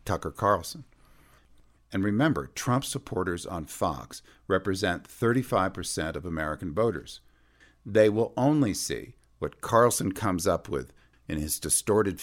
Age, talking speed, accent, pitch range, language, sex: 50-69, 125 wpm, American, 80-110 Hz, English, male